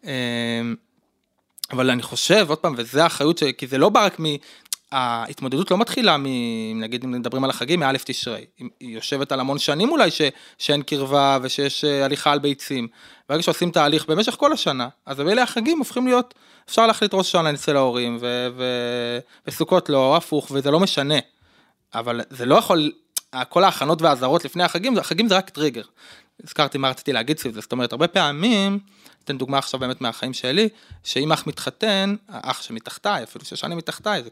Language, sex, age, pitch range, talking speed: Hebrew, male, 20-39, 130-180 Hz, 180 wpm